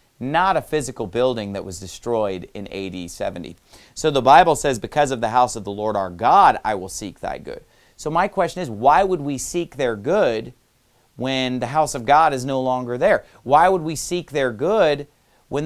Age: 40-59